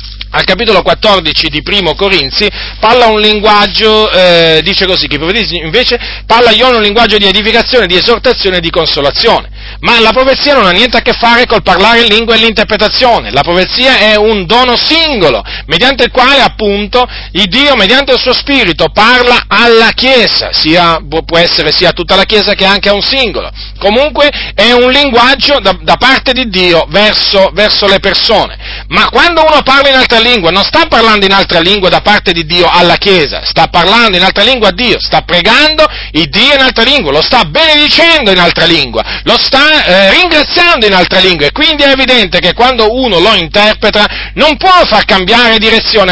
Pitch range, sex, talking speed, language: 180-255 Hz, male, 185 wpm, Italian